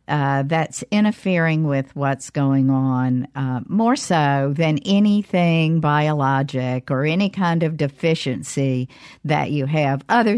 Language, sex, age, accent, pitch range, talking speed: English, female, 50-69, American, 140-180 Hz, 125 wpm